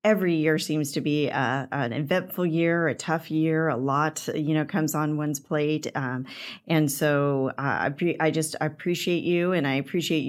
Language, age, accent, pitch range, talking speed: English, 40-59, American, 140-160 Hz, 200 wpm